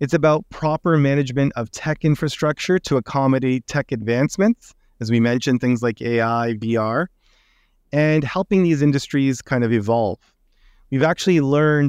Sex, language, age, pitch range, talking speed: male, English, 30-49, 125-145 Hz, 140 wpm